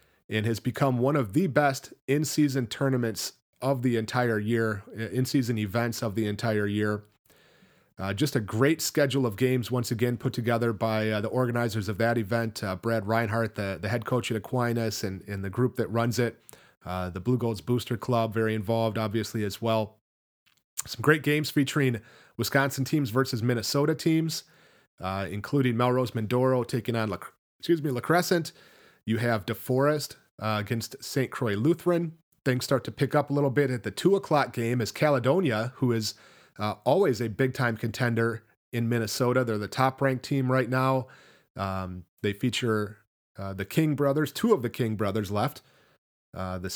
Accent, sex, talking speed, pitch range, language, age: American, male, 170 wpm, 110-135 Hz, English, 30-49